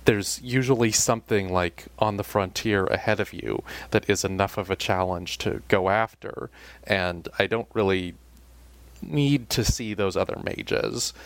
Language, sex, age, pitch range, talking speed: English, male, 30-49, 90-105 Hz, 155 wpm